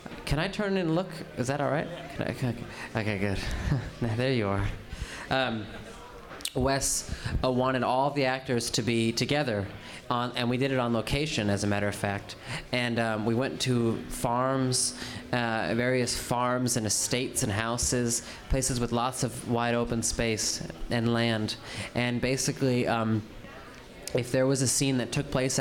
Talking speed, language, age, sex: 160 wpm, English, 20-39, male